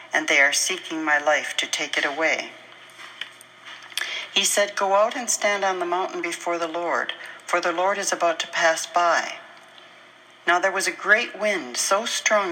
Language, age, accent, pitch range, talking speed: English, 60-79, American, 170-220 Hz, 180 wpm